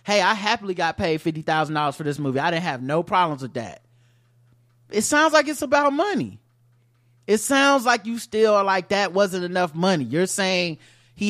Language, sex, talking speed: English, male, 190 wpm